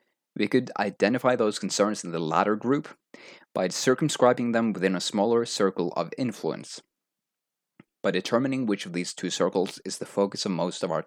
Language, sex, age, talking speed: English, male, 30-49, 175 wpm